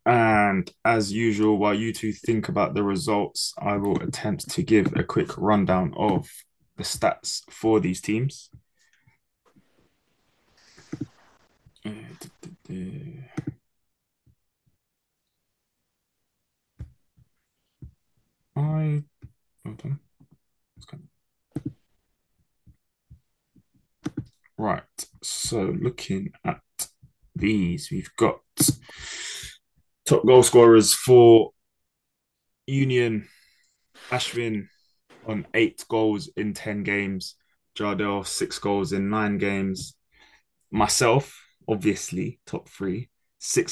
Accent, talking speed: British, 80 wpm